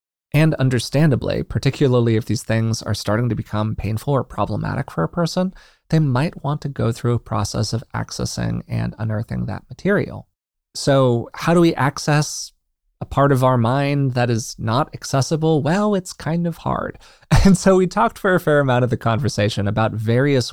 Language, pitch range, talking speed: English, 110-145 Hz, 180 wpm